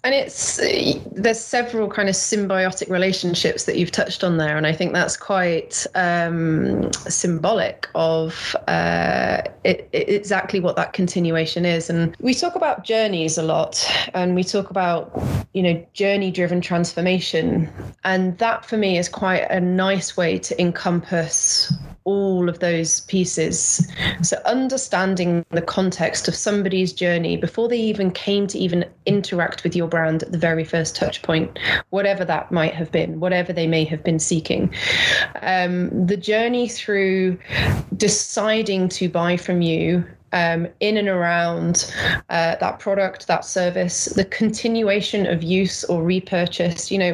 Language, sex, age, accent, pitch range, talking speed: English, female, 20-39, British, 175-210 Hz, 150 wpm